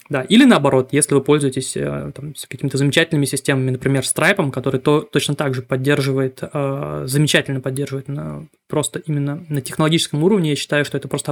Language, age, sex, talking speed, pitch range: Russian, 20-39, male, 160 wpm, 140-170 Hz